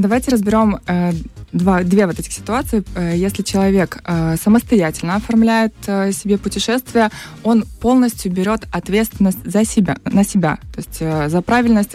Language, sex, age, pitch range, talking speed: Russian, female, 20-39, 180-220 Hz, 120 wpm